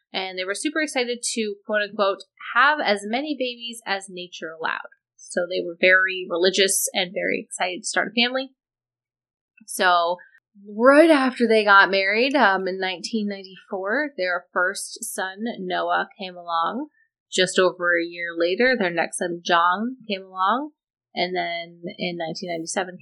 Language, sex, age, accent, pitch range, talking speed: English, female, 20-39, American, 175-240 Hz, 145 wpm